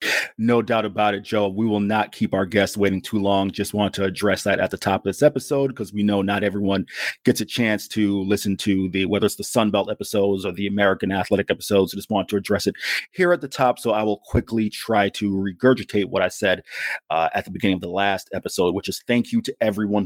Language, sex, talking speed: English, male, 240 wpm